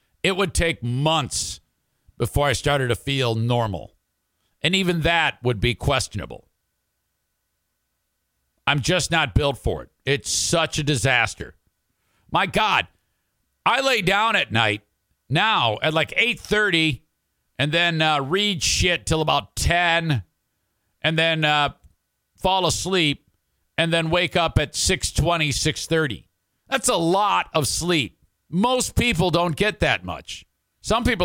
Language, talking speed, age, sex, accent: English, 135 wpm, 50-69, male, American